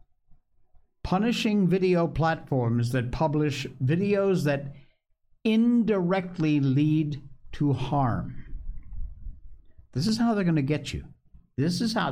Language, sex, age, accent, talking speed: English, male, 60-79, American, 110 wpm